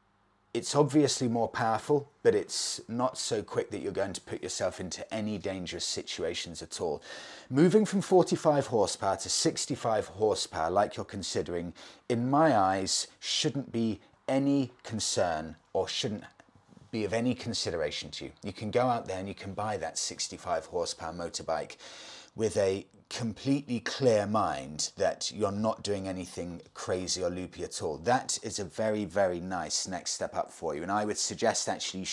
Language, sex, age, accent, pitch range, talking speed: English, male, 30-49, British, 95-125 Hz, 170 wpm